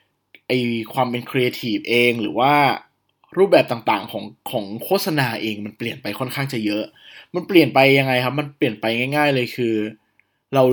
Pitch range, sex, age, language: 115-155 Hz, male, 20-39, Thai